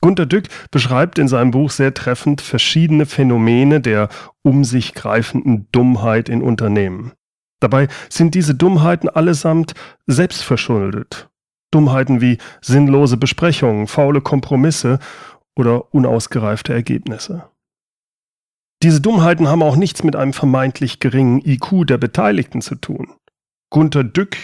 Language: German